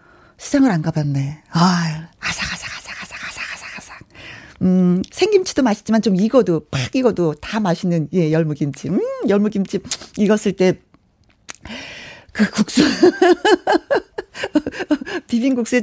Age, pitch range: 40-59, 185-270 Hz